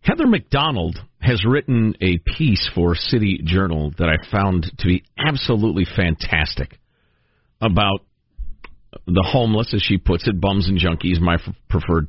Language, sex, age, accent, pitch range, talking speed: English, male, 50-69, American, 90-130 Hz, 145 wpm